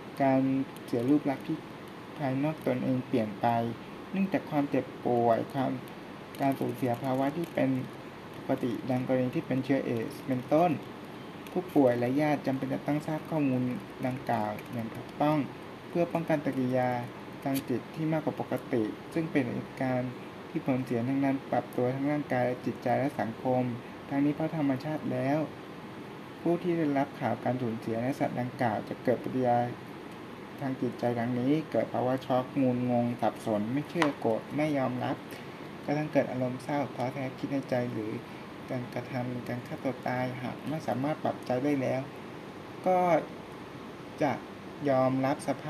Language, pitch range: Thai, 125-145 Hz